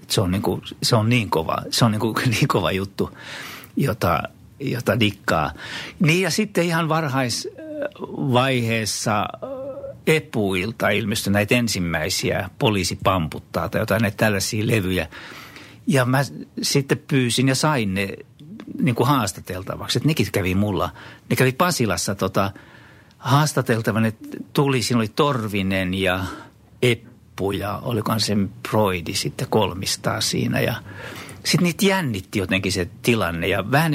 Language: Finnish